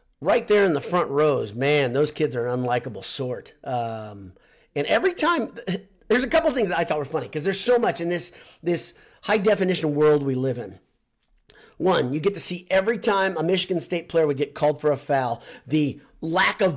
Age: 40-59